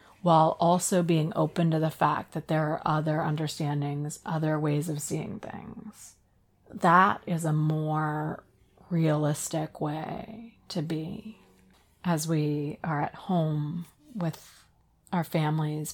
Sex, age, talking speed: female, 30-49, 125 wpm